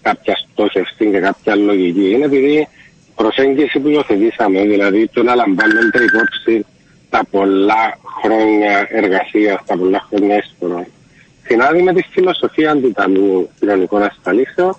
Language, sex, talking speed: Greek, male, 110 wpm